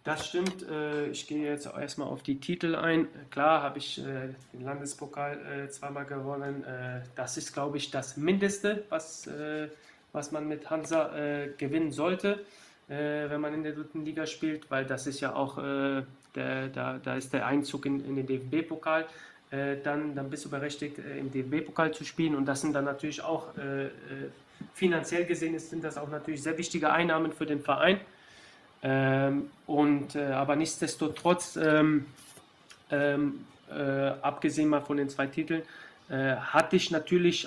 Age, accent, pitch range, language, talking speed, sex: 20-39, German, 140-160 Hz, German, 150 wpm, male